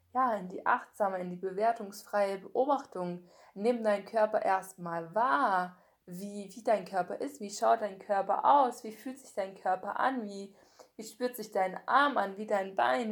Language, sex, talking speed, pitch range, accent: German, female, 180 wpm, 185-230 Hz, German